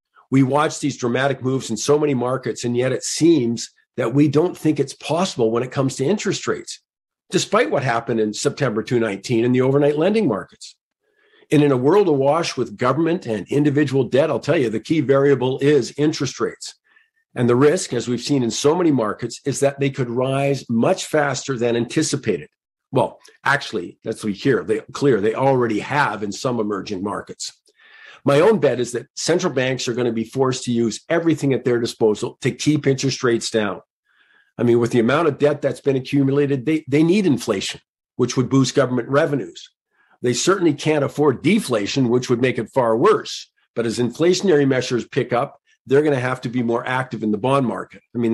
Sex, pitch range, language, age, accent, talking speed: male, 120-150 Hz, English, 50-69, American, 200 wpm